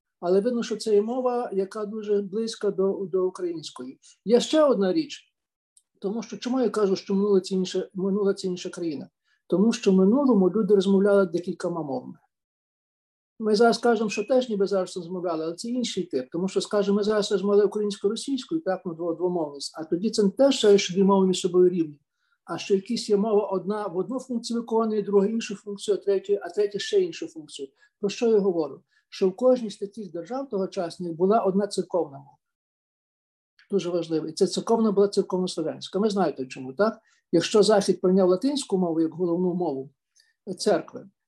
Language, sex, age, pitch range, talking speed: Ukrainian, male, 50-69, 180-220 Hz, 185 wpm